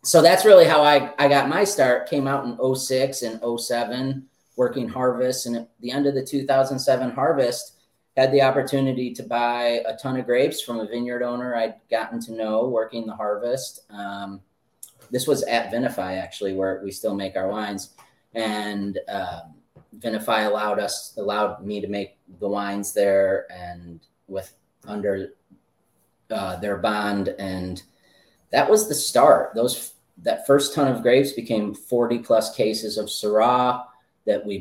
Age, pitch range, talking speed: 30-49, 105-130 Hz, 165 wpm